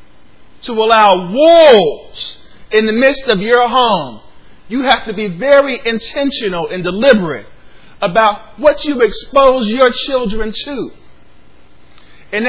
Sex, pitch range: male, 200-270 Hz